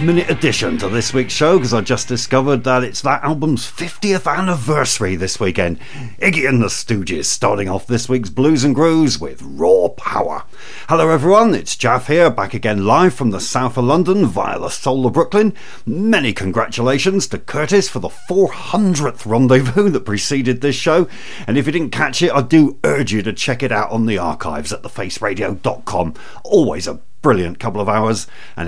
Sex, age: male, 50-69